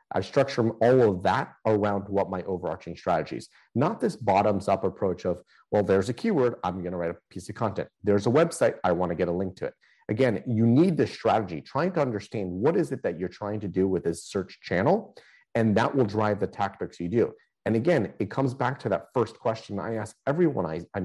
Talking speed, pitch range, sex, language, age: 230 wpm, 95-130 Hz, male, English, 30-49